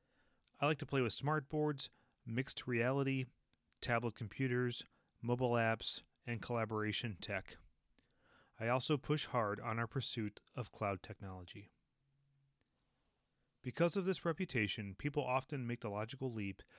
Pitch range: 105-140 Hz